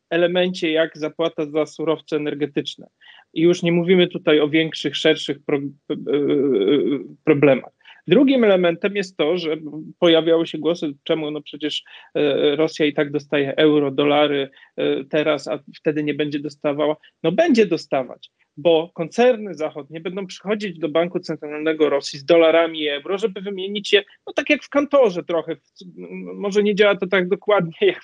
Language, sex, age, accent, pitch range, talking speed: Polish, male, 40-59, native, 150-195 Hz, 150 wpm